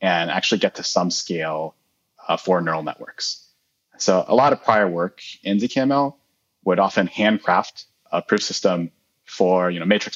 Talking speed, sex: 155 wpm, male